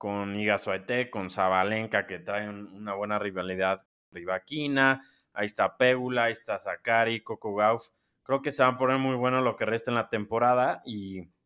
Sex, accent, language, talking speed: male, Mexican, Spanish, 180 wpm